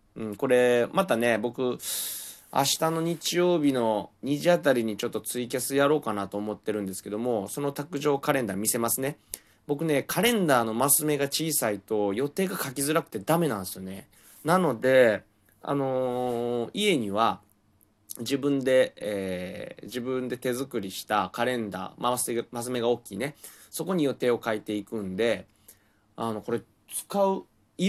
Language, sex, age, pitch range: Japanese, male, 20-39, 105-140 Hz